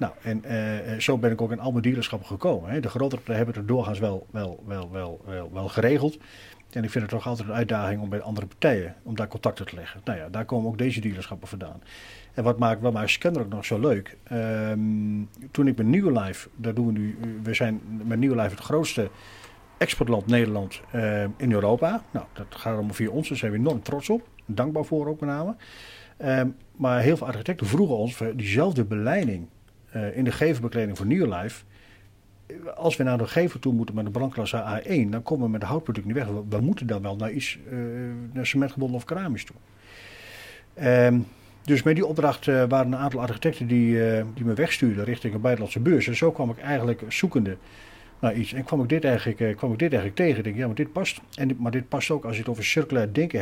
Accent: Dutch